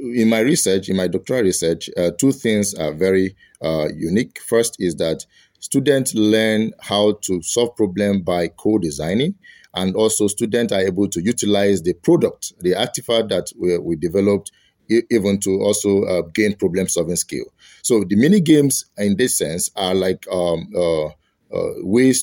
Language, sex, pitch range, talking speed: Finnish, male, 95-120 Hz, 160 wpm